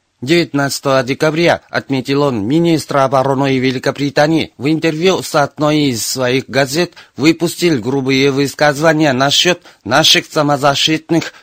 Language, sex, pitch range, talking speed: Russian, male, 130-155 Hz, 105 wpm